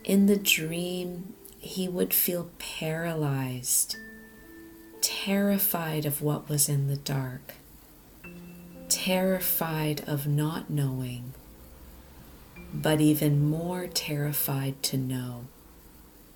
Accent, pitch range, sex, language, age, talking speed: American, 130-170 Hz, female, English, 40-59, 90 wpm